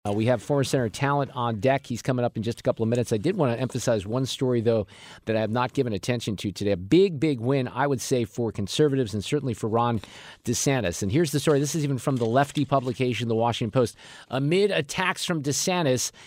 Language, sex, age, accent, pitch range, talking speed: English, male, 50-69, American, 115-145 Hz, 240 wpm